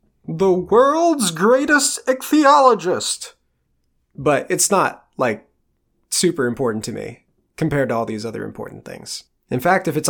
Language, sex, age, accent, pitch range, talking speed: English, male, 20-39, American, 120-155 Hz, 135 wpm